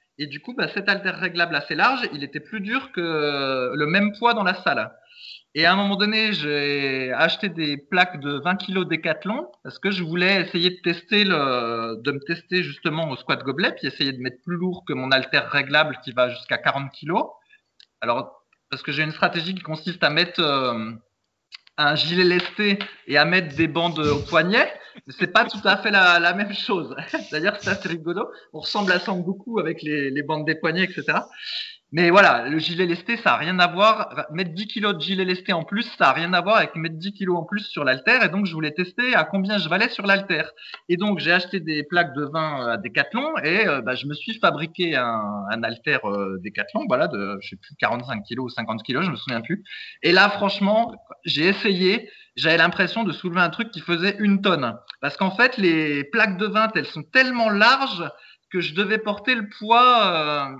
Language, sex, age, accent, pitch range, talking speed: French, male, 20-39, French, 150-205 Hz, 220 wpm